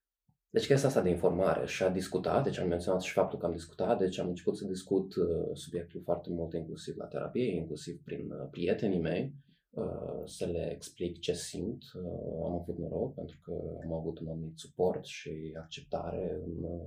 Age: 20-39